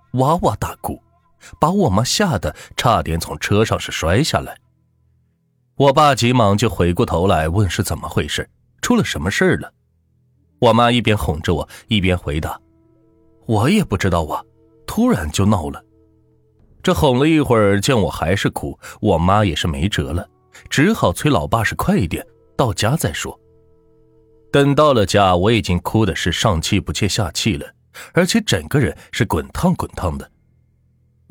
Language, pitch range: Chinese, 85-120 Hz